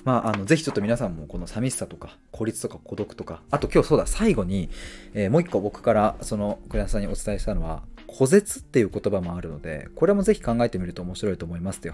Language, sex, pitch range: Japanese, male, 90-115 Hz